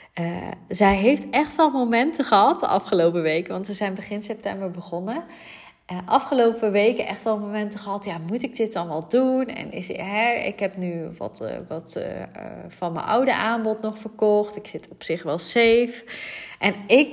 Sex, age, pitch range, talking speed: female, 20-39, 185-225 Hz, 195 wpm